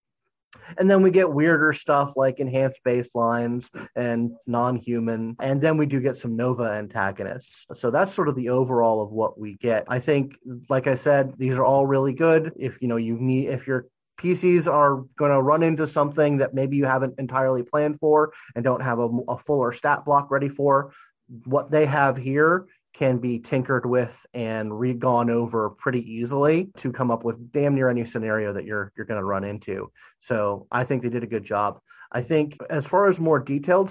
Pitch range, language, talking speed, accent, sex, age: 120-145 Hz, English, 195 wpm, American, male, 30-49